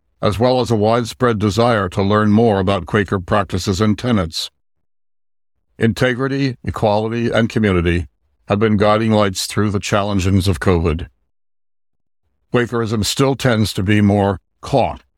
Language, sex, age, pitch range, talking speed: English, male, 60-79, 90-115 Hz, 135 wpm